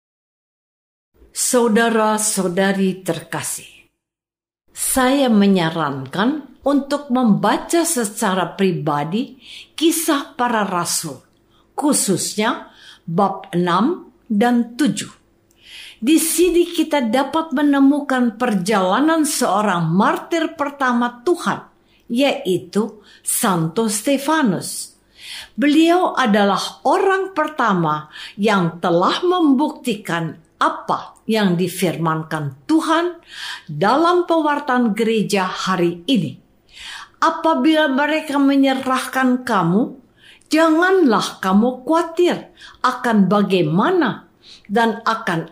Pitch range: 195-310 Hz